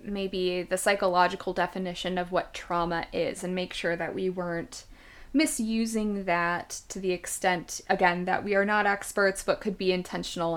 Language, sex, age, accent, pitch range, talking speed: English, female, 20-39, American, 180-210 Hz, 165 wpm